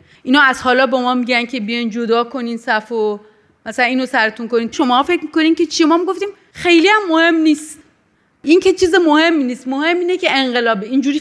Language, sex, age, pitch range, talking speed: Persian, female, 30-49, 245-330 Hz, 195 wpm